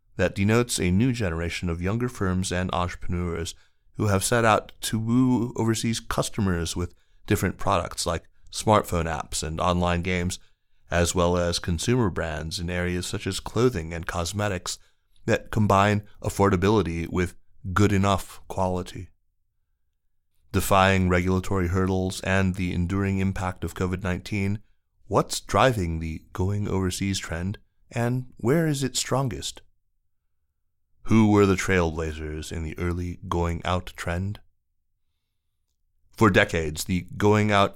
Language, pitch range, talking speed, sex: English, 85-100 Hz, 120 wpm, male